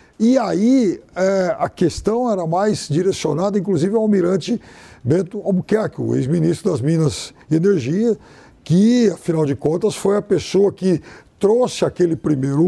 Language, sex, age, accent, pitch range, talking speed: Portuguese, male, 60-79, Brazilian, 165-235 Hz, 135 wpm